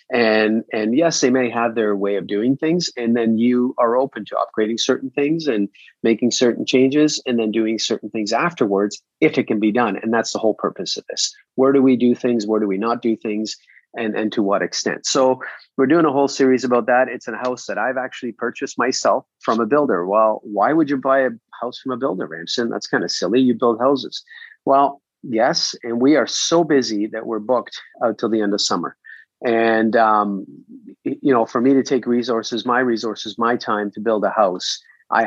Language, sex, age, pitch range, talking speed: English, male, 40-59, 110-135 Hz, 220 wpm